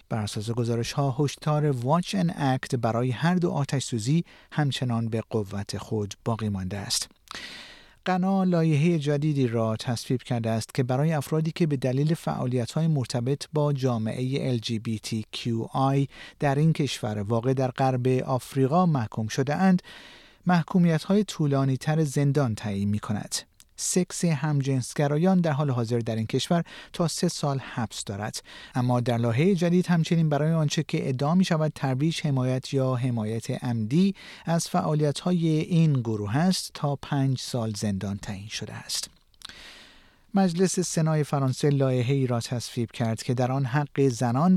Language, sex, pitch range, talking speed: Persian, male, 120-160 Hz, 150 wpm